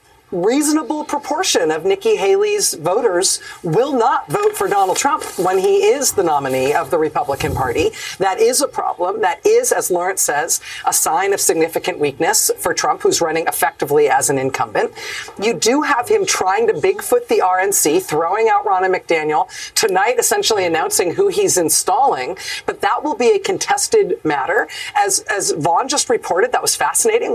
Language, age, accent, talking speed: English, 40-59, American, 170 wpm